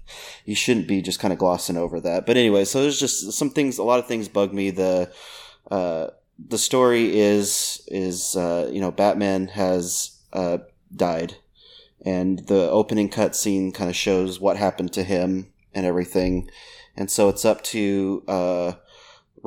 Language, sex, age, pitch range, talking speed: English, male, 30-49, 90-100 Hz, 170 wpm